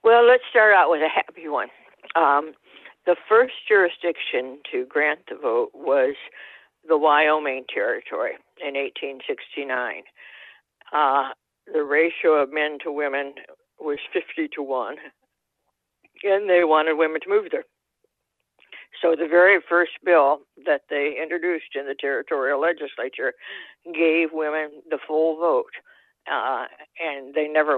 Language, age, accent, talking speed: English, 60-79, American, 130 wpm